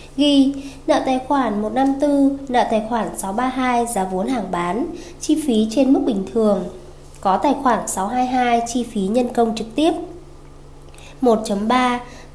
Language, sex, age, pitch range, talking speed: Vietnamese, female, 20-39, 220-265 Hz, 145 wpm